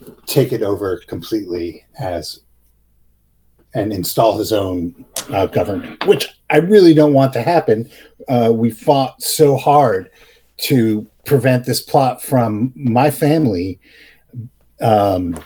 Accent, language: American, English